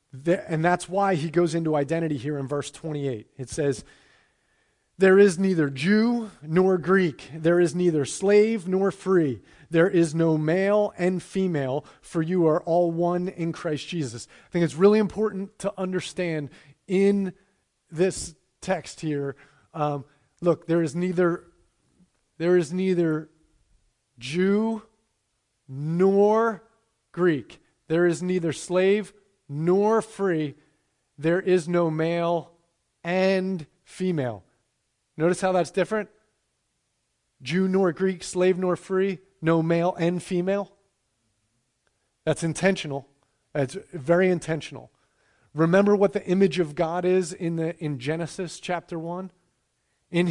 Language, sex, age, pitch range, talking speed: English, male, 30-49, 155-185 Hz, 125 wpm